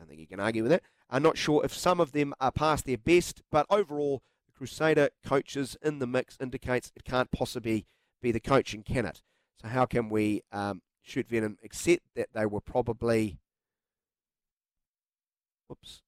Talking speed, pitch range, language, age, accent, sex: 180 wpm, 110-150 Hz, English, 40-59, Australian, male